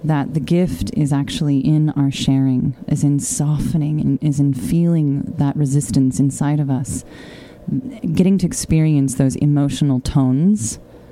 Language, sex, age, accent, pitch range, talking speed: English, female, 30-49, American, 130-150 Hz, 135 wpm